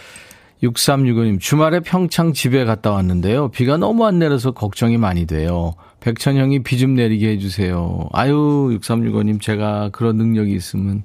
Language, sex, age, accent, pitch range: Korean, male, 40-59, native, 100-140 Hz